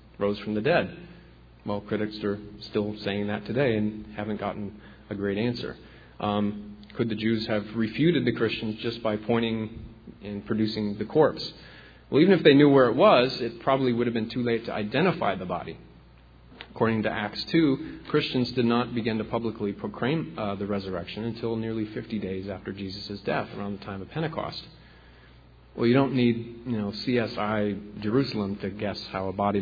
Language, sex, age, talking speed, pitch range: English, male, 40-59, 180 wpm, 100-115 Hz